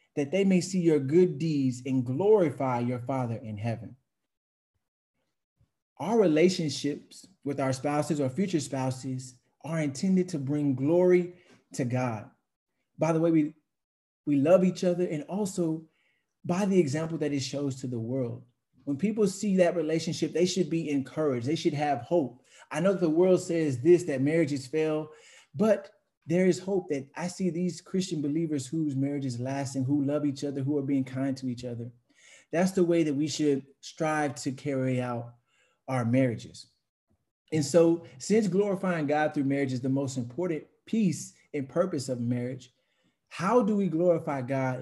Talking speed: 170 wpm